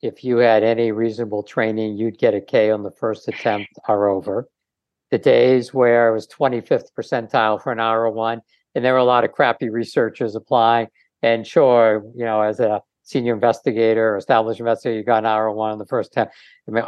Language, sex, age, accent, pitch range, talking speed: English, male, 60-79, American, 110-125 Hz, 200 wpm